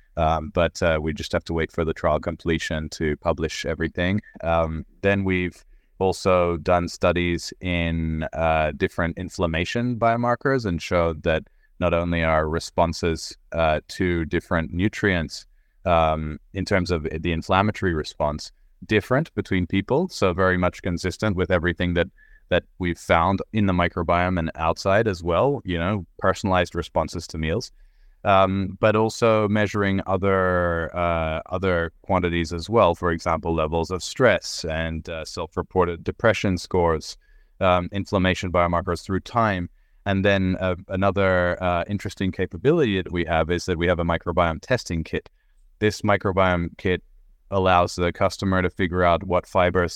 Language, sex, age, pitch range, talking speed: English, male, 30-49, 85-95 Hz, 150 wpm